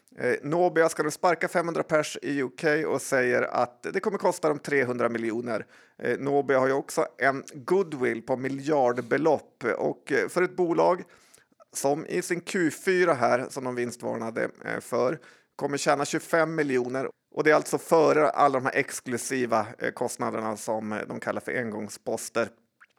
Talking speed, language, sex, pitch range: 165 wpm, Swedish, male, 130-160 Hz